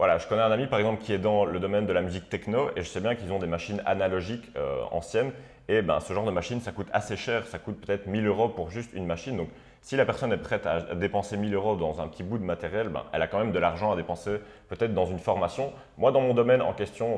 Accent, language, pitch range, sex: French, French, 90-110 Hz, male